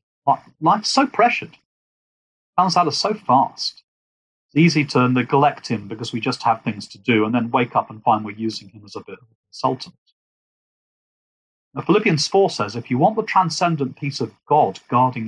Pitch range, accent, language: 110-155 Hz, British, English